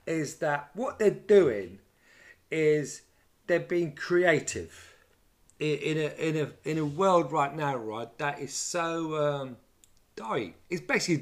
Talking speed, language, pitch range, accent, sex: 145 wpm, English, 130-200 Hz, British, male